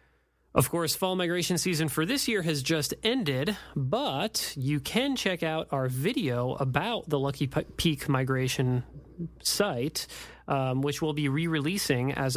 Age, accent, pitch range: 30-49, American, 130-160 Hz